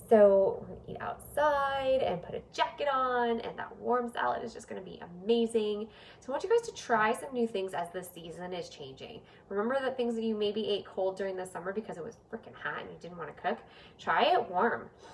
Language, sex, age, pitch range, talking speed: English, female, 10-29, 185-235 Hz, 230 wpm